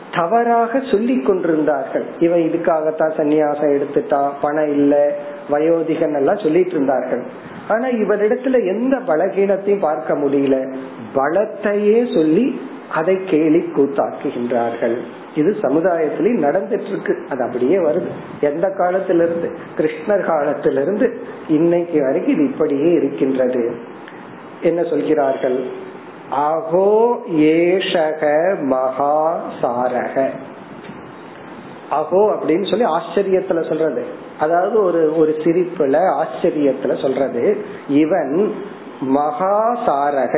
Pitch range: 145-190 Hz